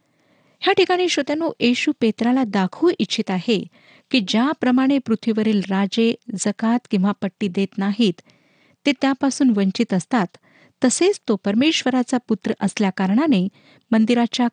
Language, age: Marathi, 50-69